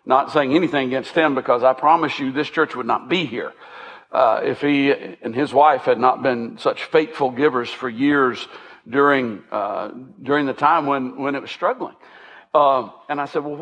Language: English